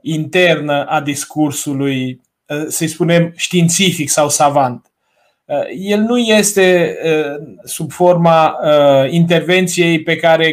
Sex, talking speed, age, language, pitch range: male, 90 wpm, 20-39, Romanian, 155-190 Hz